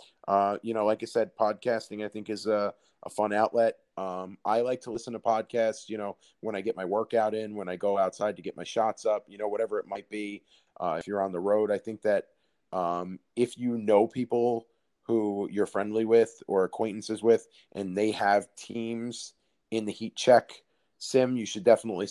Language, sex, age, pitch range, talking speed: English, male, 30-49, 100-115 Hz, 210 wpm